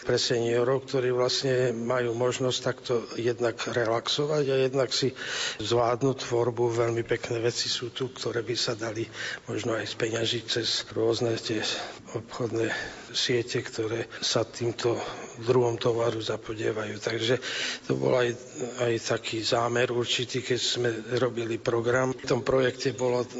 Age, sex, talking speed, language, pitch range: 40-59, male, 135 wpm, Slovak, 115-125 Hz